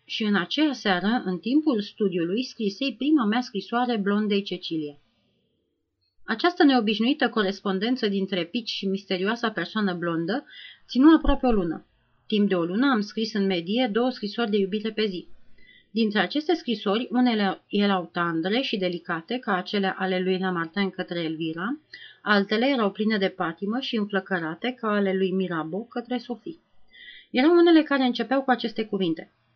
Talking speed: 150 wpm